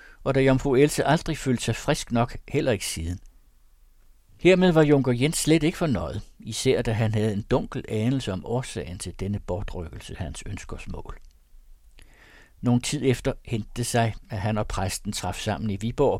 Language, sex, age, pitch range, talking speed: Danish, male, 60-79, 95-125 Hz, 170 wpm